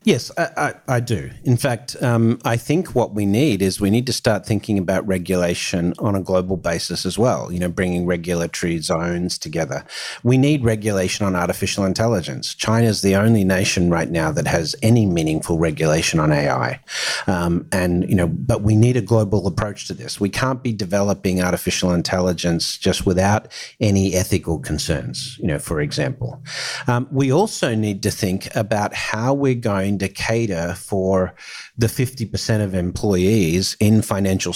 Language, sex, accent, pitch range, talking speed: English, male, Australian, 90-120 Hz, 170 wpm